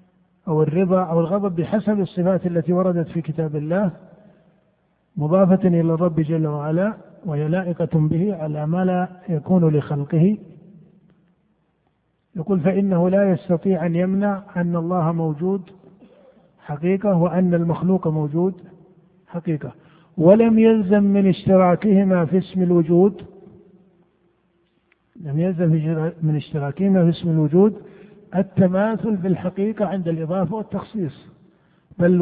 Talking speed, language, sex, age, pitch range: 110 wpm, Arabic, male, 50-69, 170-195 Hz